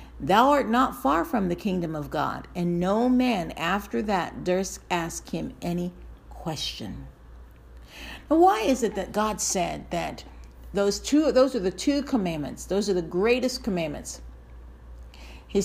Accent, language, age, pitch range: American, English, 50-69, 155-245 Hz